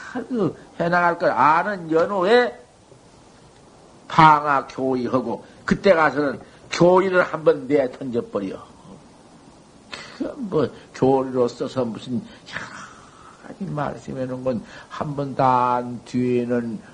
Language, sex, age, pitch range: Korean, male, 50-69, 120-165 Hz